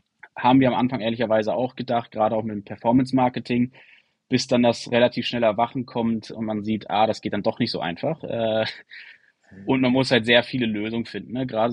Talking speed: 200 wpm